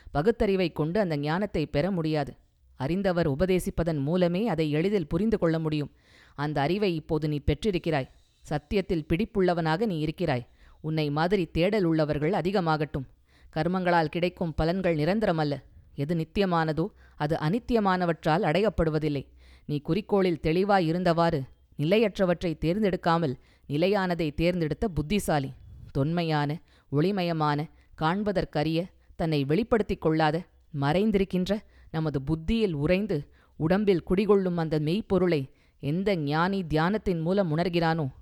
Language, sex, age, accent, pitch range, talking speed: Tamil, female, 20-39, native, 150-190 Hz, 100 wpm